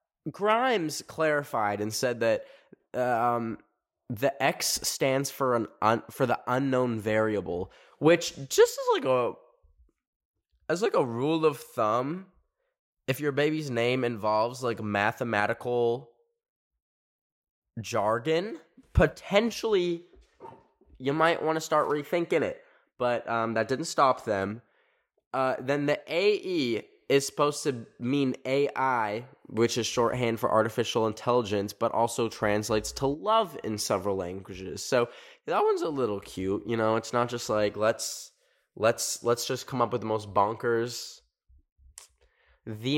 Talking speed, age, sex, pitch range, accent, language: 135 wpm, 10-29, male, 115-155 Hz, American, English